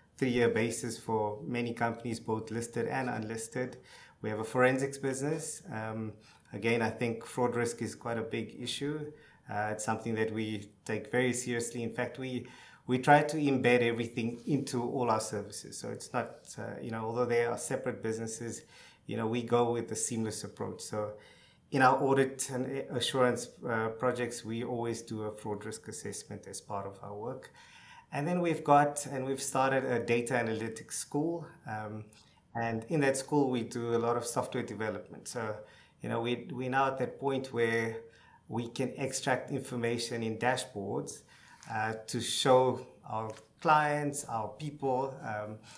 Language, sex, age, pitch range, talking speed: English, male, 20-39, 110-130 Hz, 170 wpm